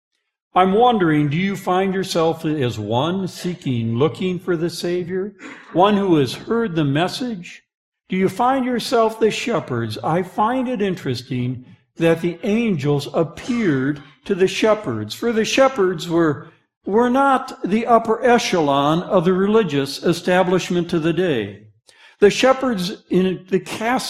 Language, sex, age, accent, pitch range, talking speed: English, male, 60-79, American, 150-220 Hz, 140 wpm